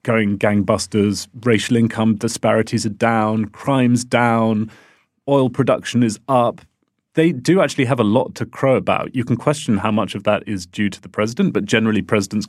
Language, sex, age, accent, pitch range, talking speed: English, male, 30-49, British, 105-130 Hz, 180 wpm